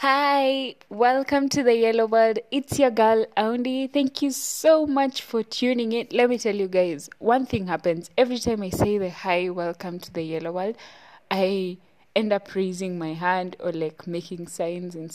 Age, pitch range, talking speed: 20-39, 165-225 Hz, 185 wpm